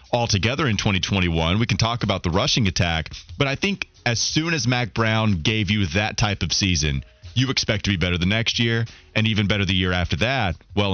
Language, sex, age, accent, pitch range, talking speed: English, male, 30-49, American, 100-150 Hz, 220 wpm